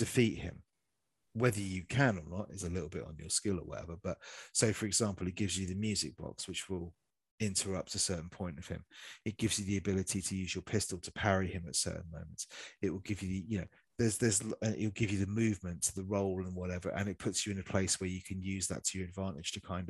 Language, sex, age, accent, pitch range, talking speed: English, male, 30-49, British, 90-105 Hz, 255 wpm